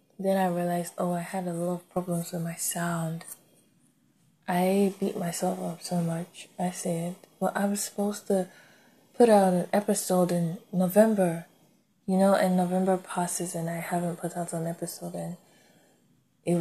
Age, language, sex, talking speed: 20-39, English, female, 165 wpm